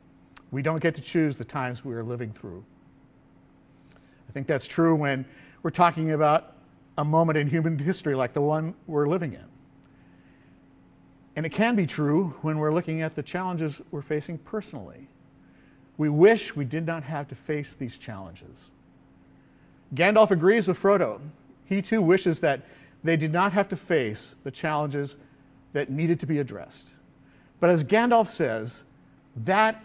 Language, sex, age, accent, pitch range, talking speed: English, male, 50-69, American, 130-170 Hz, 160 wpm